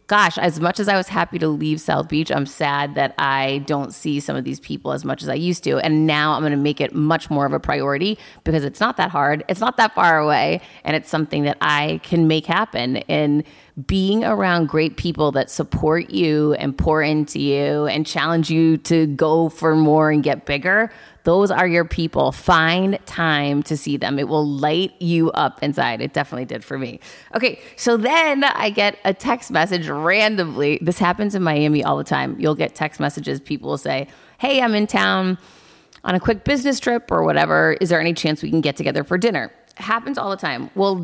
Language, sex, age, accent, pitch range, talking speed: English, female, 30-49, American, 150-185 Hz, 215 wpm